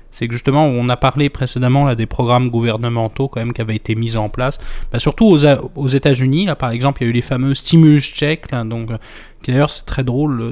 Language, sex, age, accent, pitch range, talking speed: French, male, 20-39, French, 120-150 Hz, 250 wpm